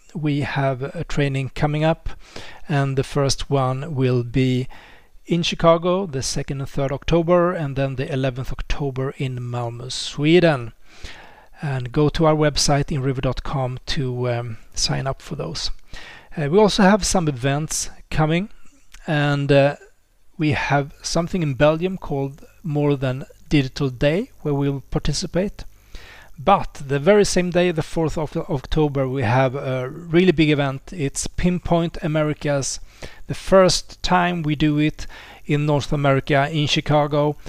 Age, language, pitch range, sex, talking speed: 30-49, English, 135-160 Hz, male, 145 wpm